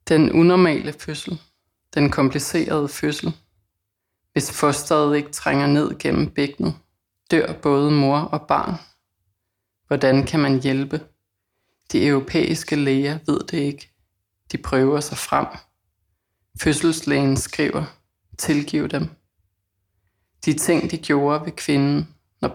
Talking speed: 115 wpm